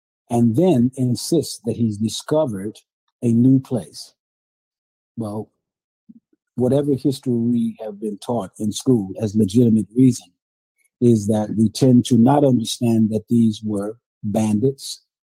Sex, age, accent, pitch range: male, 50-69, American, 110-130 Hz